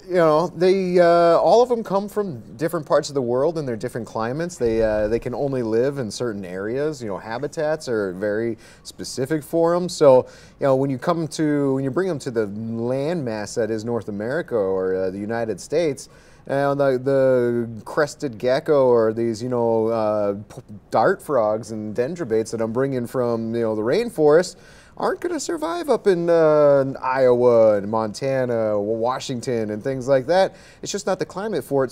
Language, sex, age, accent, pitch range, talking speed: English, male, 30-49, American, 110-150 Hz, 195 wpm